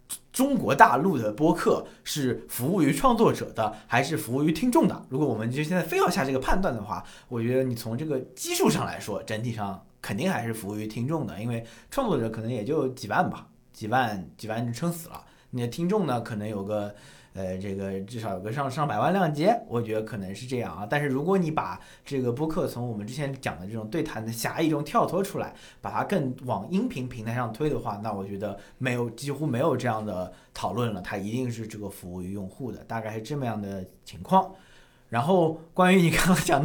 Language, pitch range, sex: Chinese, 110-155 Hz, male